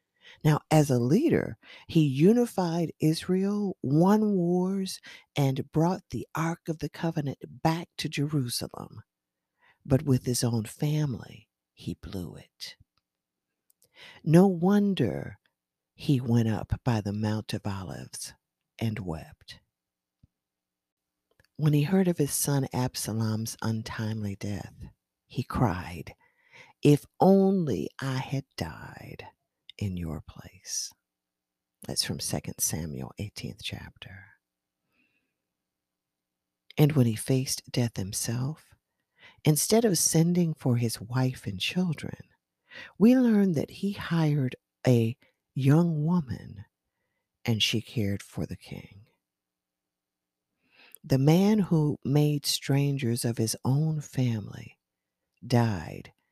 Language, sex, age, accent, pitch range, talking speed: English, female, 50-69, American, 95-155 Hz, 110 wpm